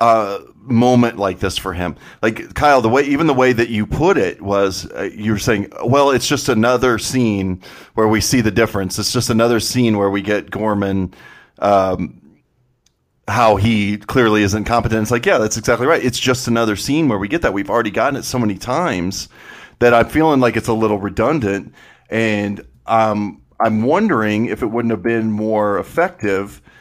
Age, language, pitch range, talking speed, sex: 40-59, English, 105-125 Hz, 195 wpm, male